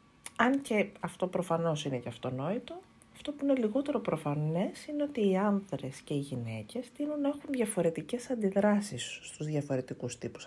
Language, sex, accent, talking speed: Greek, female, native, 150 wpm